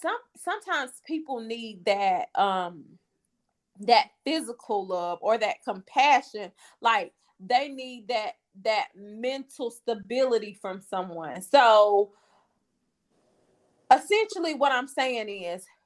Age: 20-39